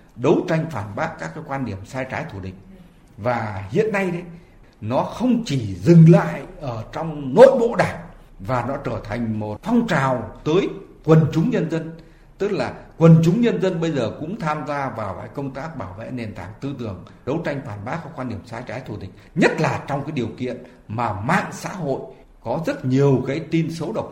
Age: 60-79